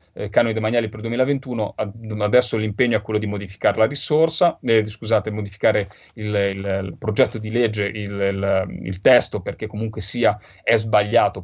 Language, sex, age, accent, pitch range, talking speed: Italian, male, 30-49, native, 105-115 Hz, 175 wpm